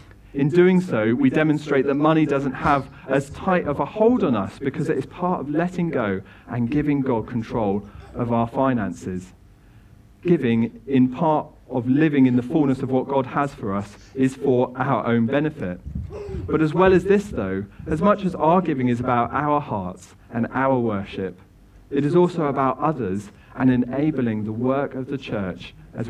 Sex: male